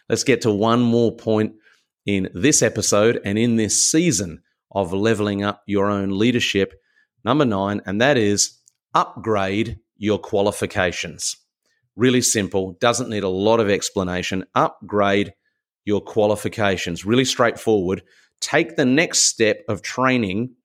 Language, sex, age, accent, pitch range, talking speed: English, male, 30-49, Australian, 105-125 Hz, 135 wpm